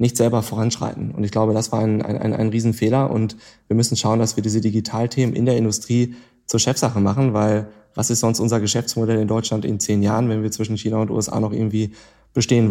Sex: male